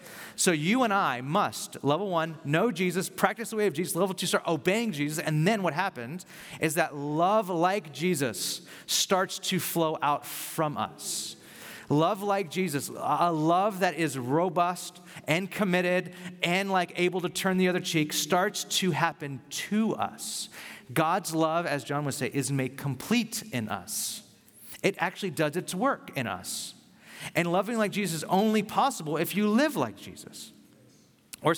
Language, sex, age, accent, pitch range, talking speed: English, male, 30-49, American, 145-190 Hz, 165 wpm